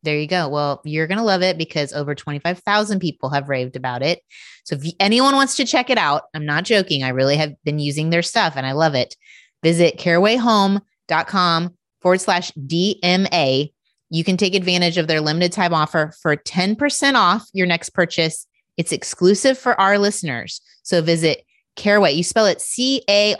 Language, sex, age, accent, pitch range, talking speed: English, female, 30-49, American, 155-205 Hz, 185 wpm